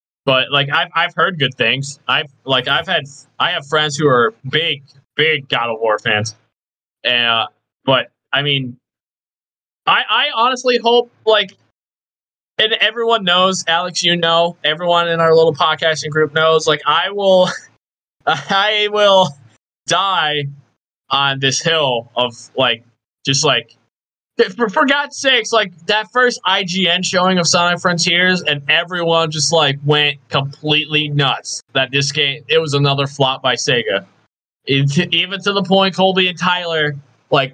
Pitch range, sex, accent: 135-175 Hz, male, American